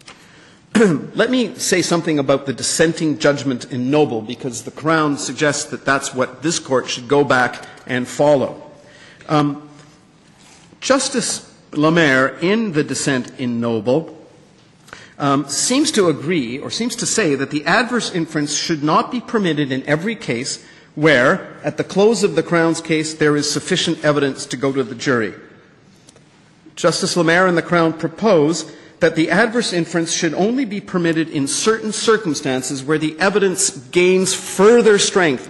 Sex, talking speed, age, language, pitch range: male, 155 wpm, 50-69, English, 140-180 Hz